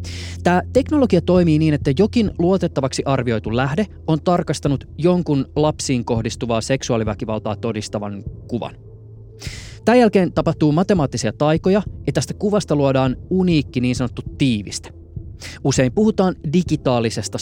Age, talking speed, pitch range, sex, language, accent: 20-39, 115 wpm, 110-165 Hz, male, Finnish, native